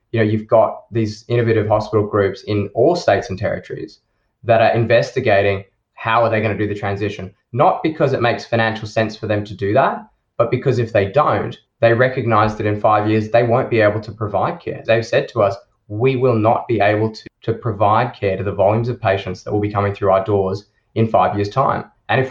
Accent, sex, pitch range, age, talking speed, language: Australian, male, 105-125 Hz, 20-39, 220 wpm, English